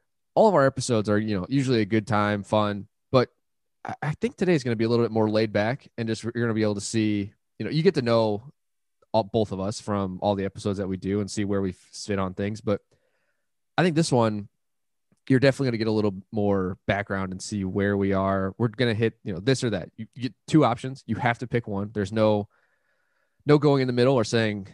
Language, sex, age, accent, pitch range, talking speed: English, male, 20-39, American, 100-125 Hz, 255 wpm